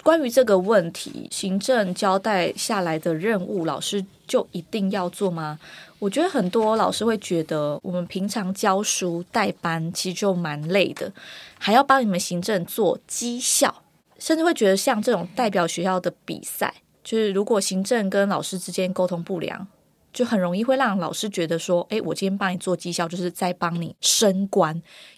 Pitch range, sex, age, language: 170-205 Hz, female, 20-39, Chinese